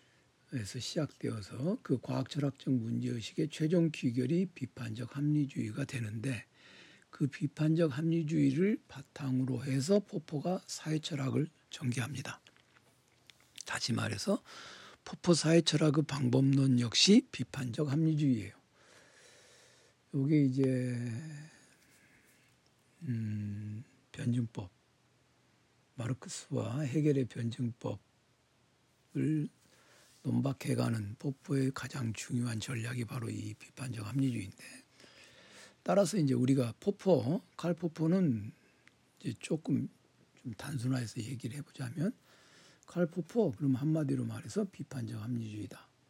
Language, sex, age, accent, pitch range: Korean, male, 60-79, native, 125-150 Hz